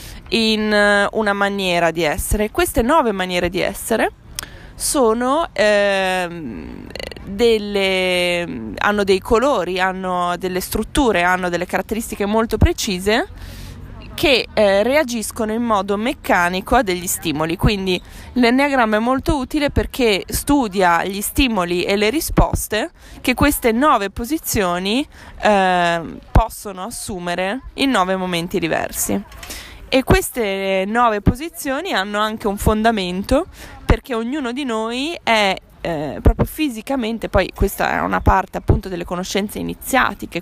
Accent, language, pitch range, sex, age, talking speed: native, Italian, 185-255 Hz, female, 20-39, 115 wpm